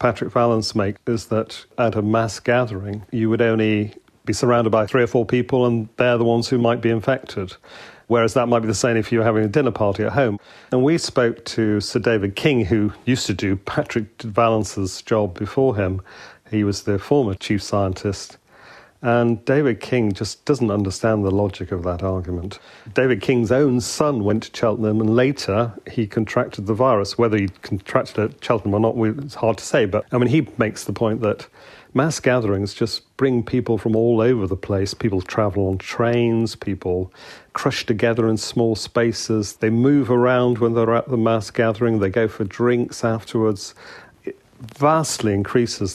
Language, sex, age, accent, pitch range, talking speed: English, male, 40-59, British, 105-120 Hz, 190 wpm